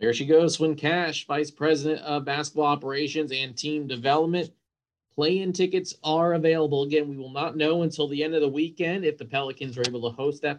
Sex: male